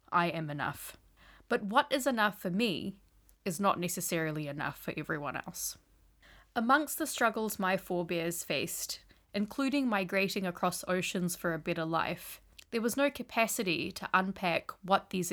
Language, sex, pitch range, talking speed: English, female, 170-215 Hz, 150 wpm